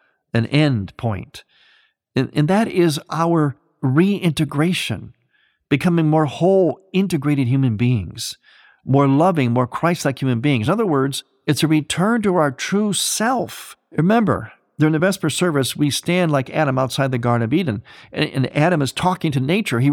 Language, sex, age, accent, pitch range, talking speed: English, male, 50-69, American, 125-175 Hz, 155 wpm